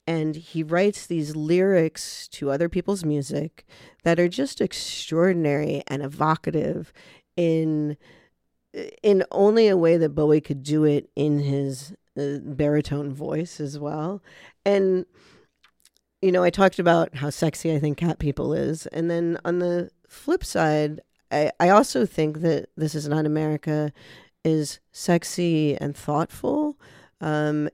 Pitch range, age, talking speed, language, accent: 145-170 Hz, 40-59, 140 wpm, English, American